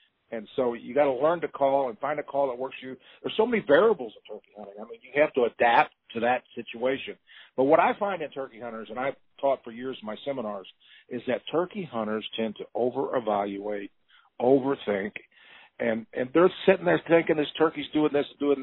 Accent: American